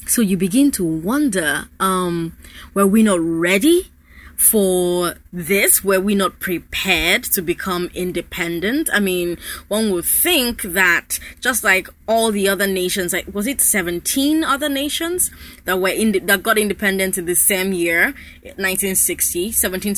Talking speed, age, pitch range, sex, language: 145 wpm, 20-39, 175-225 Hz, female, English